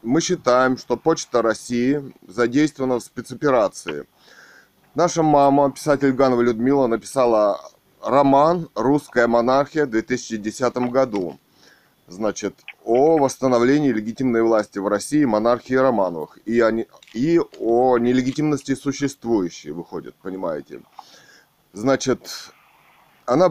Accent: native